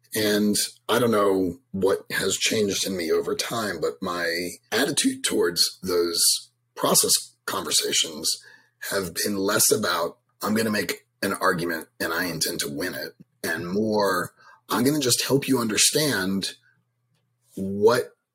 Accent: American